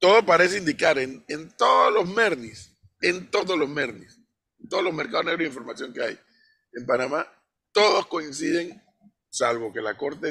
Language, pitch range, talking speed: Spanish, 120-180 Hz, 170 wpm